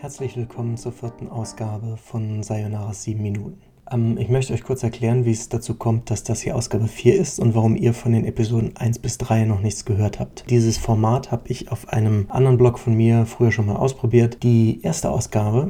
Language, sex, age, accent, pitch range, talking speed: German, male, 30-49, German, 110-125 Hz, 205 wpm